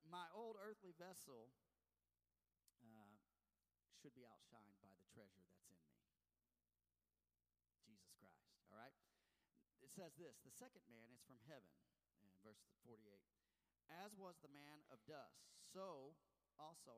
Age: 40-59